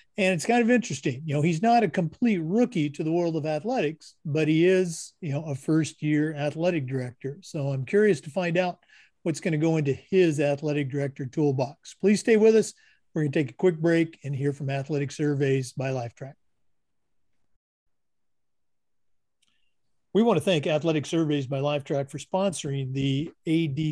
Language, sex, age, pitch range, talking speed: English, male, 50-69, 140-185 Hz, 175 wpm